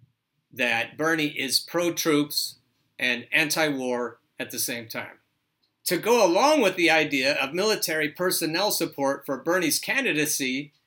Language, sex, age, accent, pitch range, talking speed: English, male, 50-69, American, 145-210 Hz, 125 wpm